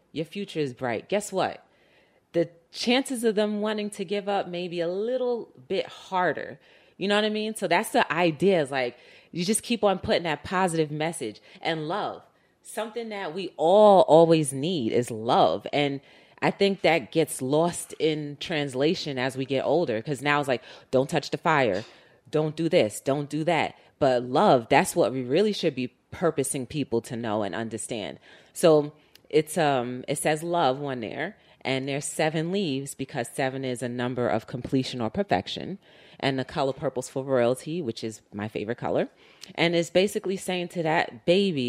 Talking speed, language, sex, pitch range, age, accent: 185 wpm, English, female, 135-185 Hz, 30-49, American